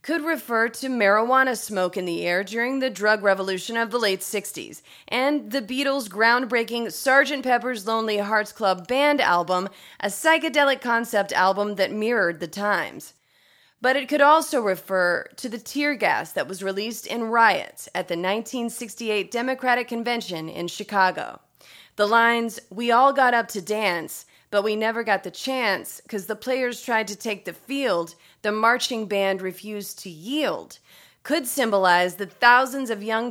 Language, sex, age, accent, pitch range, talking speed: English, female, 30-49, American, 195-250 Hz, 160 wpm